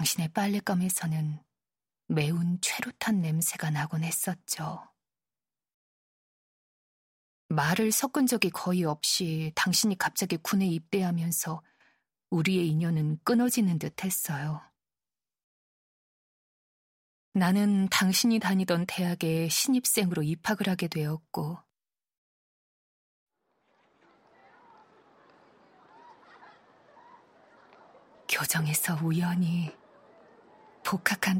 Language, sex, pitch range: Korean, female, 160-200 Hz